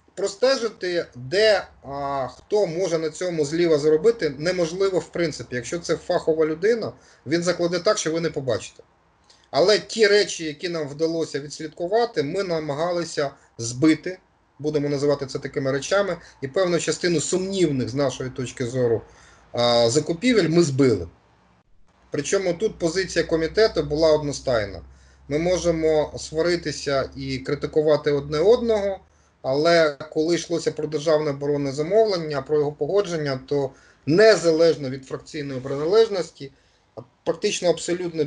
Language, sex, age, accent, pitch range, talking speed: Ukrainian, male, 30-49, native, 140-170 Hz, 125 wpm